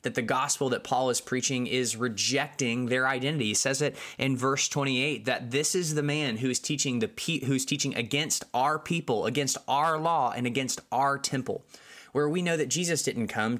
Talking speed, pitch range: 205 wpm, 115-140 Hz